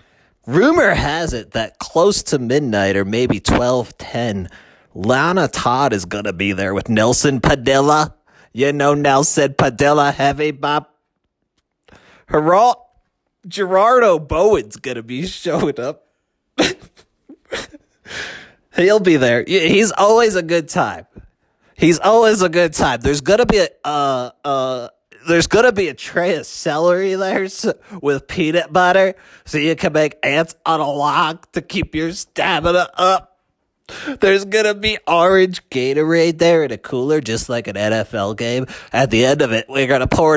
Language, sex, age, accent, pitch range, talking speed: English, male, 30-49, American, 130-175 Hz, 155 wpm